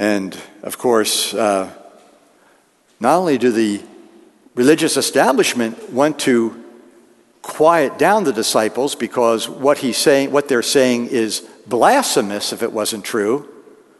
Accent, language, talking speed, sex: American, English, 125 wpm, male